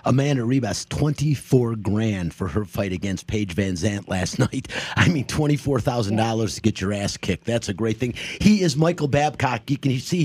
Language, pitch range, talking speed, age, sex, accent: English, 125-155 Hz, 195 wpm, 30-49, male, American